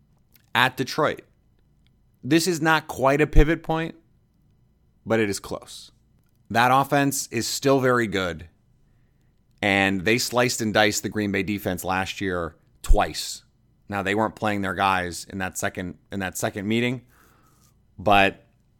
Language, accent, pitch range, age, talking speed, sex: English, American, 105-135 Hz, 30-49, 145 wpm, male